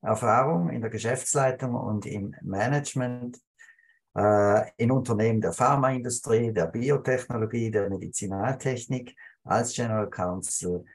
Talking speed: 105 wpm